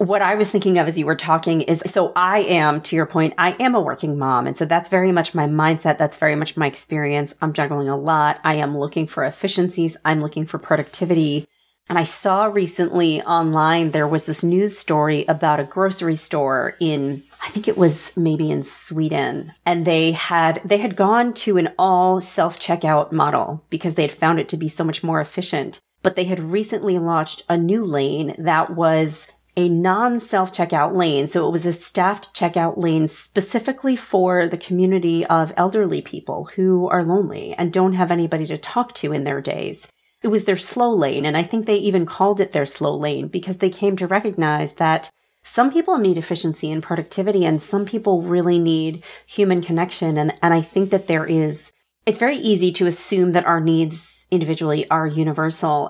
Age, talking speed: 40-59, 195 wpm